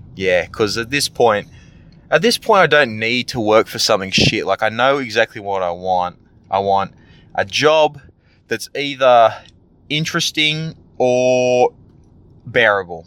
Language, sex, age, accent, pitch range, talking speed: English, male, 20-39, Australian, 95-125 Hz, 145 wpm